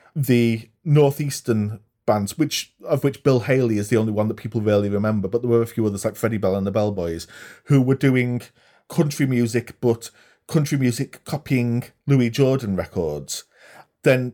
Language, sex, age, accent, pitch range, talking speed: English, male, 30-49, British, 105-130 Hz, 170 wpm